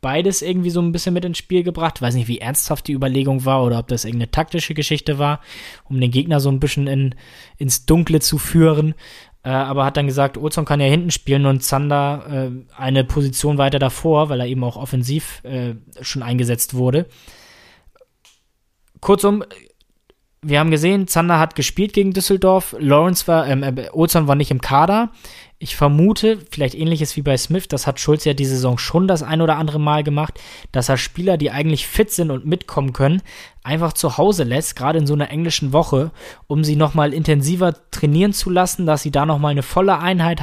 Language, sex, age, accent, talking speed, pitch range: German, male, 20-39, German, 190 wpm, 135-165 Hz